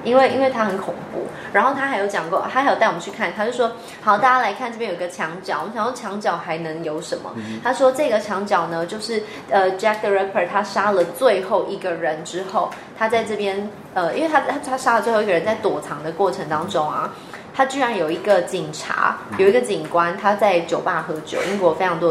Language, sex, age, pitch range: Chinese, female, 20-39, 180-245 Hz